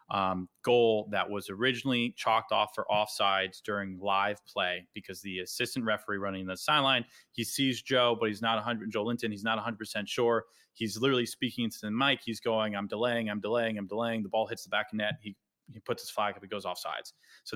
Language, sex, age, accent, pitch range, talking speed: English, male, 20-39, American, 105-120 Hz, 210 wpm